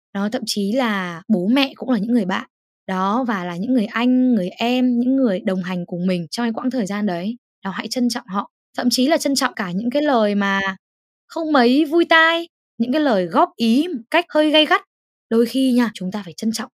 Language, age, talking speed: Vietnamese, 10-29, 235 wpm